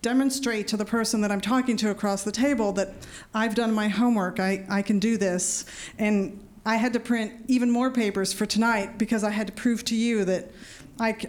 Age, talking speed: 40-59, 215 wpm